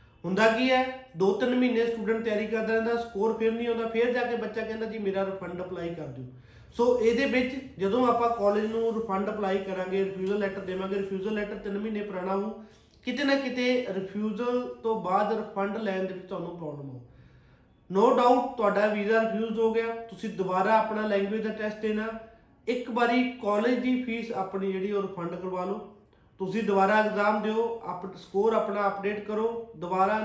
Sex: male